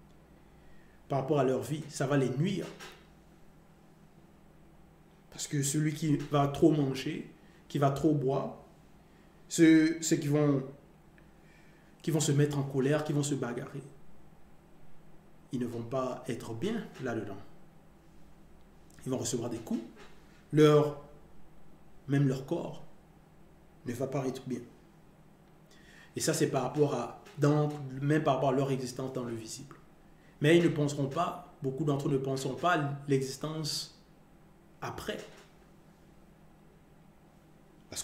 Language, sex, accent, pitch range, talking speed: French, male, French, 135-175 Hz, 135 wpm